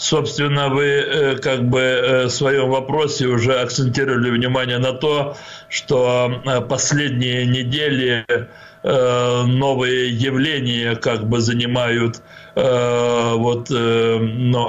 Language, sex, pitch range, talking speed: Russian, male, 120-135 Hz, 90 wpm